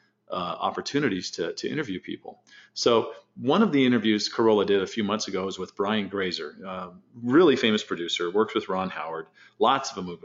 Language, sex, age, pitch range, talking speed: English, male, 40-59, 95-130 Hz, 200 wpm